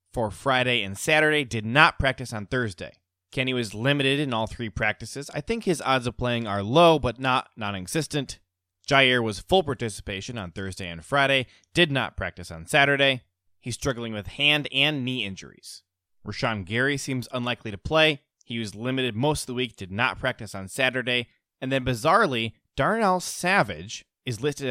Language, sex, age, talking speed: English, male, 20-39, 175 wpm